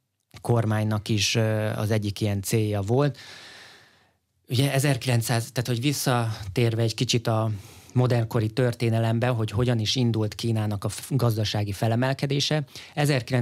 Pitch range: 105-120 Hz